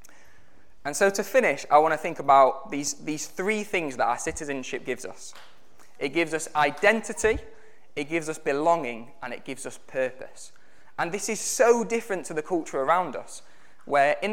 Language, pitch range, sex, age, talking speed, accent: English, 135-185 Hz, male, 20-39, 180 wpm, British